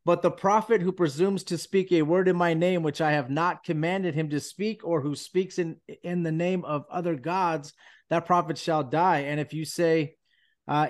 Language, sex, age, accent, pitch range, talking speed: English, male, 30-49, American, 150-185 Hz, 215 wpm